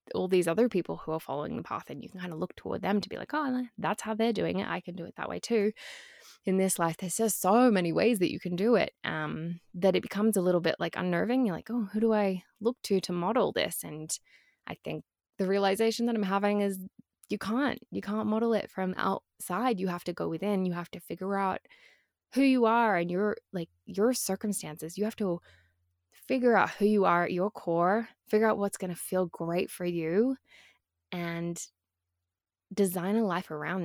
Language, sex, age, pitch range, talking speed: English, female, 20-39, 180-230 Hz, 220 wpm